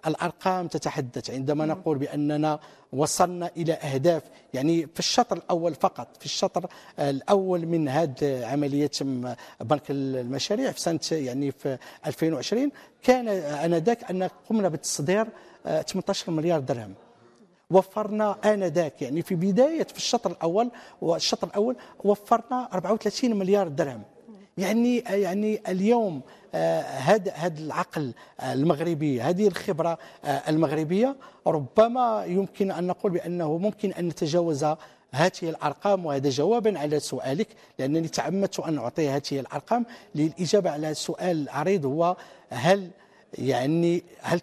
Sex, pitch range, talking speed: male, 150-195 Hz, 120 wpm